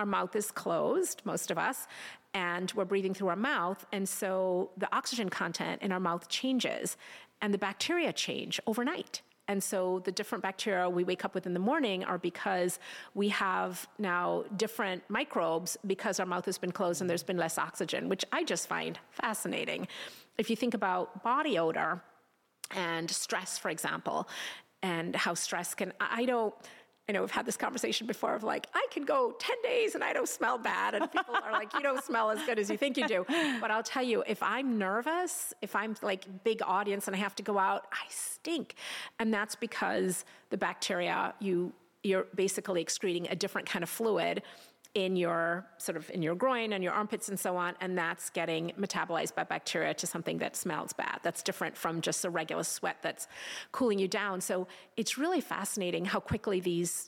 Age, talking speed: 30-49, 200 wpm